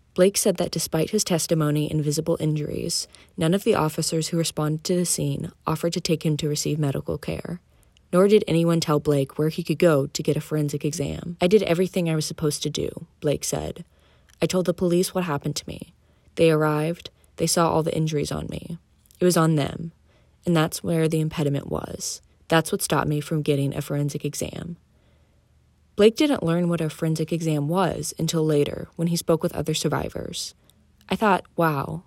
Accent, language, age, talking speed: American, English, 20-39, 195 wpm